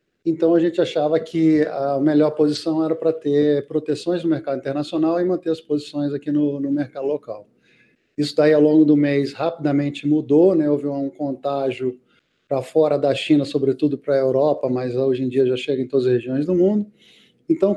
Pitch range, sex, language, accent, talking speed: 140-165 Hz, male, Portuguese, Brazilian, 195 wpm